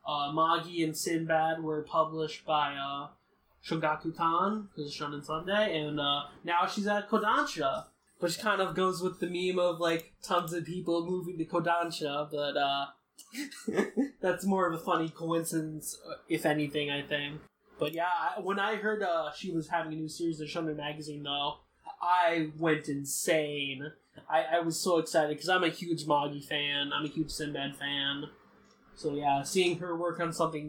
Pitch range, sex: 150-185 Hz, male